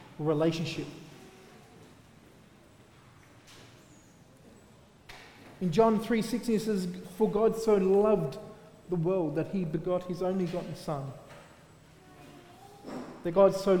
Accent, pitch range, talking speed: Australian, 170-210 Hz, 105 wpm